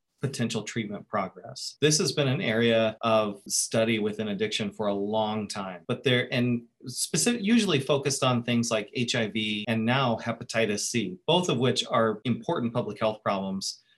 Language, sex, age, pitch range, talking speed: English, male, 30-49, 110-125 Hz, 155 wpm